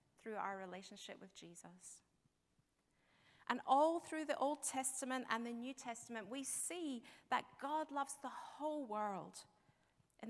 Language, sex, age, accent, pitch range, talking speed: English, female, 30-49, British, 195-280 Hz, 140 wpm